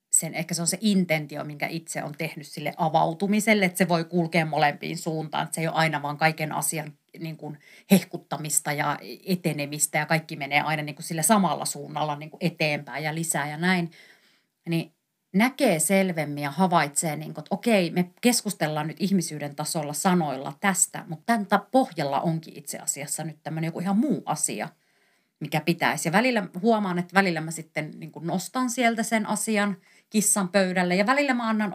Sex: female